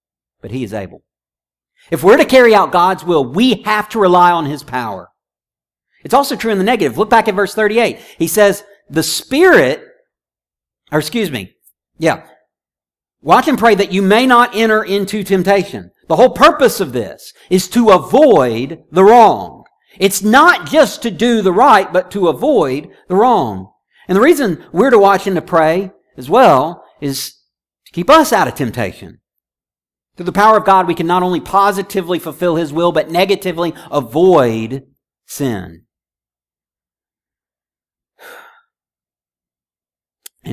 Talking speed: 155 wpm